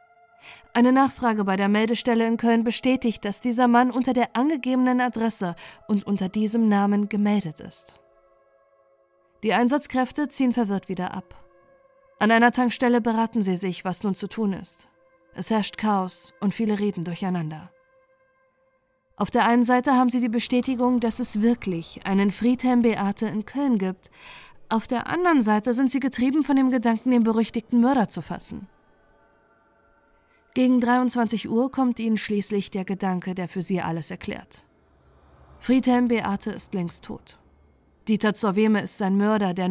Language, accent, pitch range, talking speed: German, German, 195-245 Hz, 155 wpm